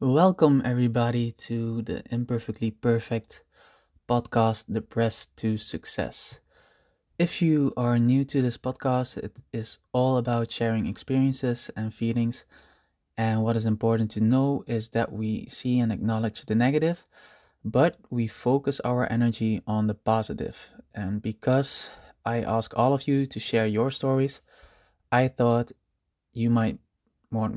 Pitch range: 110-130 Hz